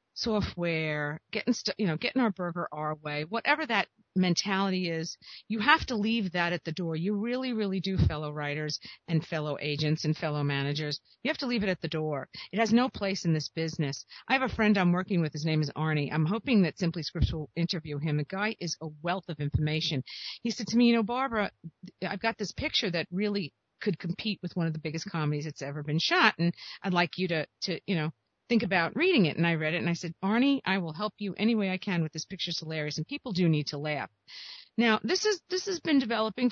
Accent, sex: American, female